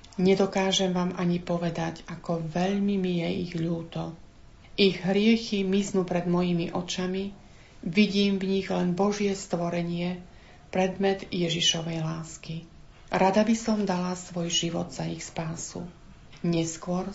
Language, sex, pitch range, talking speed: Slovak, female, 170-195 Hz, 125 wpm